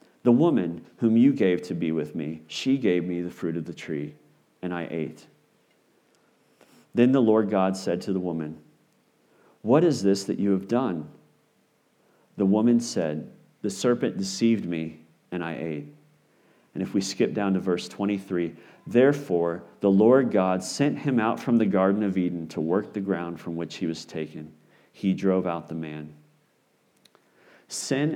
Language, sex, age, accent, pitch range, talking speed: English, male, 40-59, American, 85-110 Hz, 170 wpm